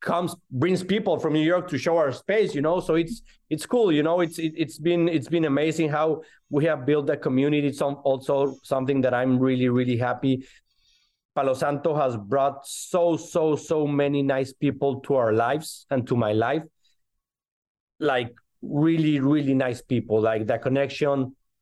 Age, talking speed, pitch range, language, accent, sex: 30-49, 175 wpm, 125-150 Hz, English, Mexican, male